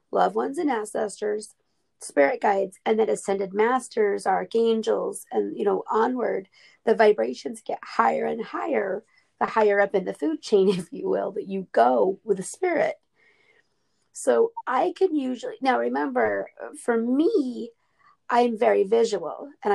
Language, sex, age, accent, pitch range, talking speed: English, female, 40-59, American, 200-295 Hz, 150 wpm